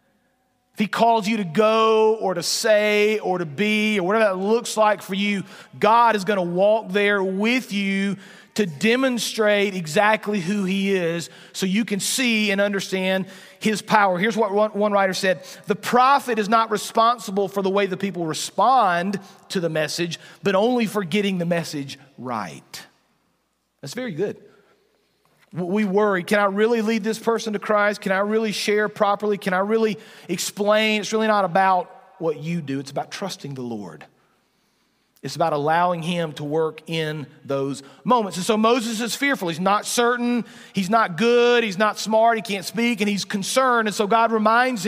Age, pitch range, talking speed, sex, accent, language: 40-59, 185-220 Hz, 180 wpm, male, American, English